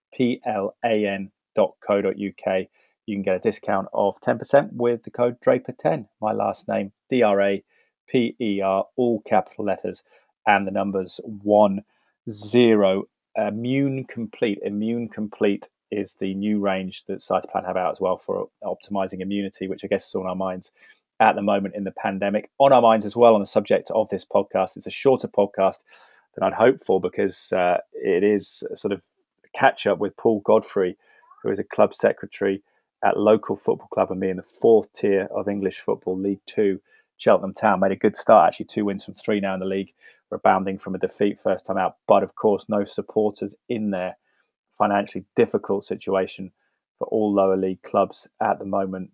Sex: male